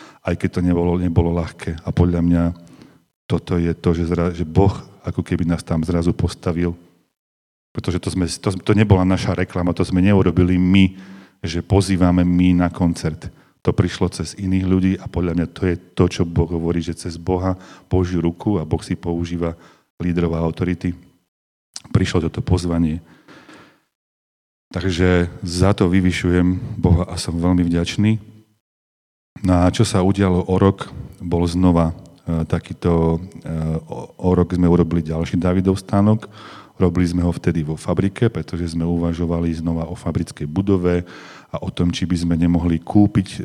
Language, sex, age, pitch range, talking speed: Slovak, male, 40-59, 85-95 Hz, 160 wpm